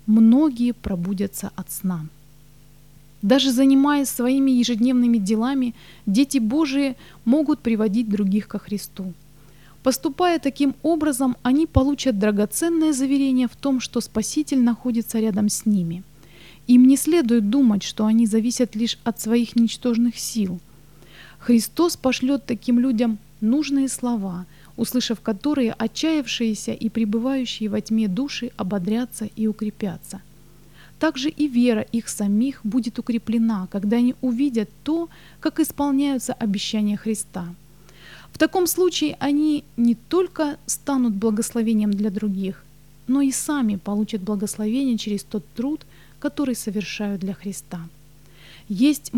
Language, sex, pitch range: English, female, 205-265 Hz